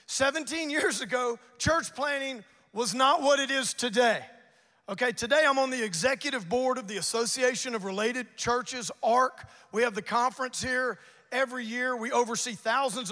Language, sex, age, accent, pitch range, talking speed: English, male, 40-59, American, 225-265 Hz, 160 wpm